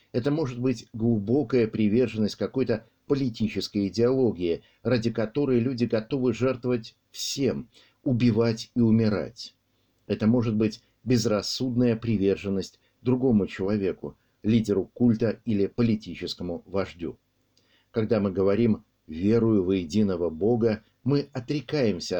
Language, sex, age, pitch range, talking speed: Russian, male, 60-79, 105-125 Hz, 105 wpm